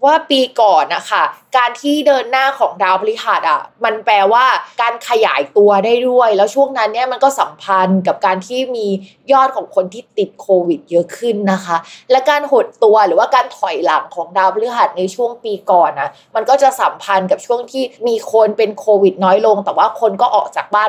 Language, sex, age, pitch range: Thai, female, 20-39, 200-260 Hz